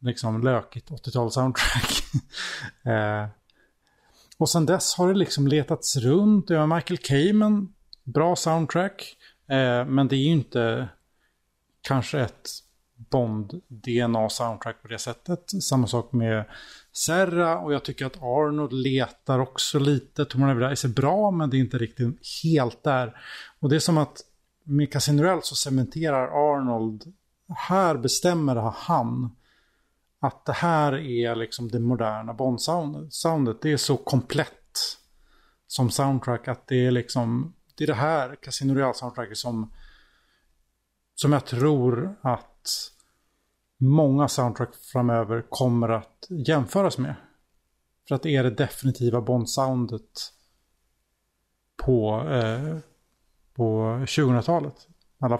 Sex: male